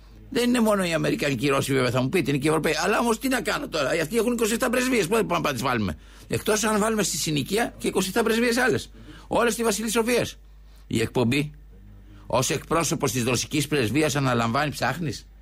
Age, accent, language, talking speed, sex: 60-79, Spanish, Greek, 200 wpm, male